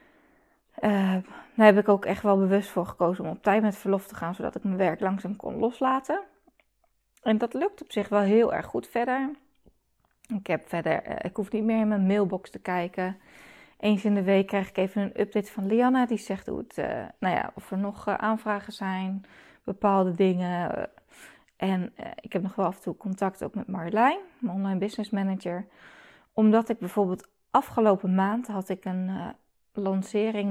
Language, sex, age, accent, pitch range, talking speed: Dutch, female, 20-39, Dutch, 190-230 Hz, 185 wpm